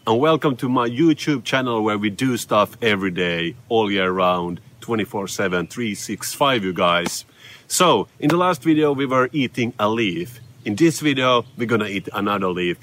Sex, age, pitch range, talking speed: male, 30-49, 105-145 Hz, 170 wpm